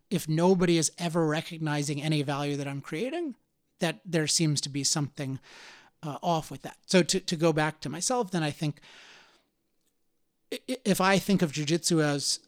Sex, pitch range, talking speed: male, 150-180 Hz, 175 wpm